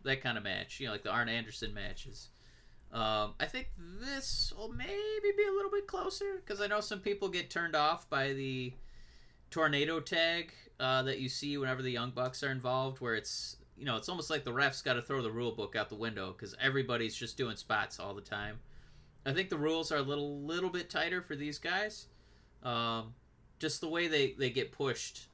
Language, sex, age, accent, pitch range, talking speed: English, male, 20-39, American, 115-155 Hz, 220 wpm